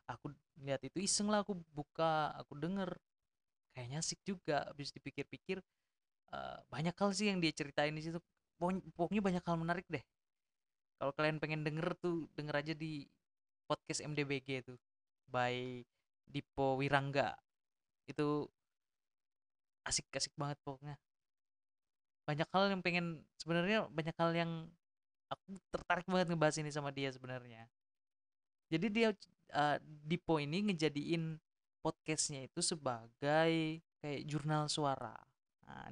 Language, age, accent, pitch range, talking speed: Indonesian, 20-39, native, 140-170 Hz, 125 wpm